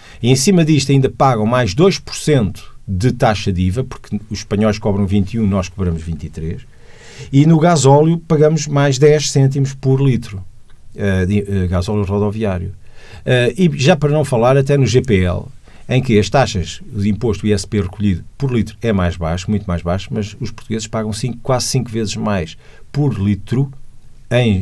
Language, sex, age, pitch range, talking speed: Portuguese, male, 50-69, 100-135 Hz, 175 wpm